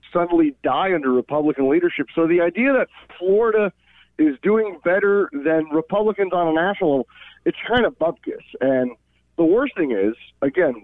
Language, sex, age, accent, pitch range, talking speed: English, male, 40-59, American, 115-175 Hz, 160 wpm